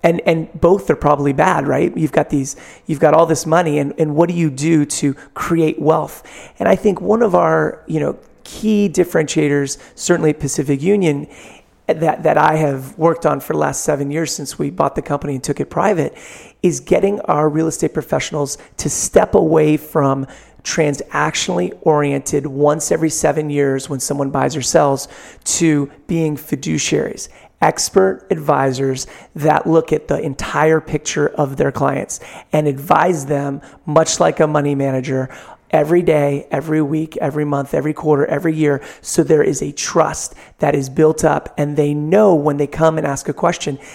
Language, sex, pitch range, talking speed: English, male, 145-165 Hz, 175 wpm